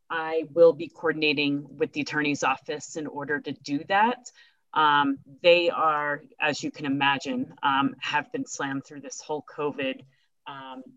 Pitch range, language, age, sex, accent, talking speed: 140-165 Hz, English, 30-49, female, American, 160 wpm